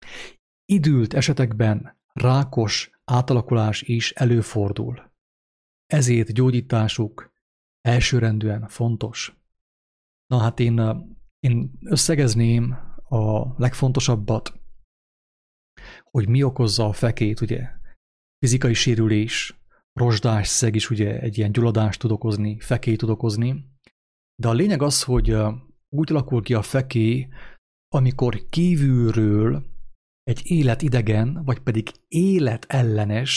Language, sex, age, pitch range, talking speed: English, male, 30-49, 110-135 Hz, 95 wpm